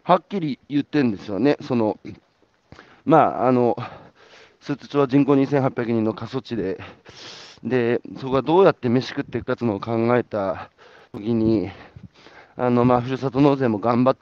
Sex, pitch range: male, 120-150 Hz